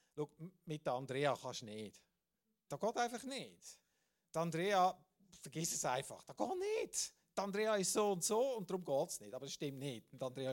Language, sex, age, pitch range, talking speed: German, male, 50-69, 130-180 Hz, 205 wpm